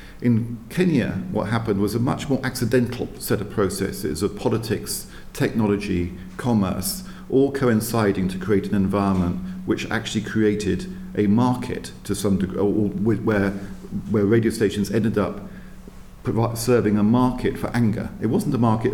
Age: 50-69